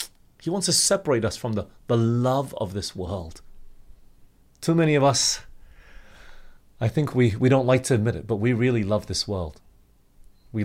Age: 30-49